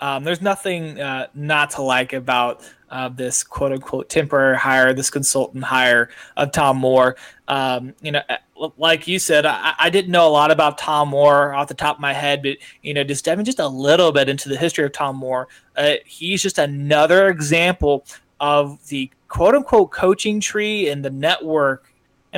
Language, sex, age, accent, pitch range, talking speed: English, male, 20-39, American, 135-160 Hz, 190 wpm